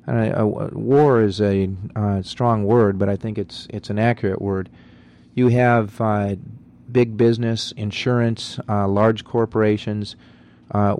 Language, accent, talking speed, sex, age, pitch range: English, American, 140 wpm, male, 40-59, 95-110 Hz